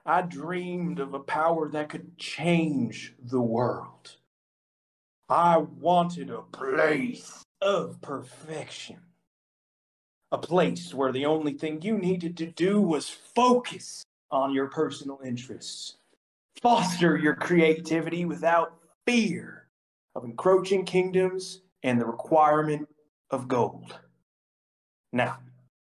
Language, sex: English, male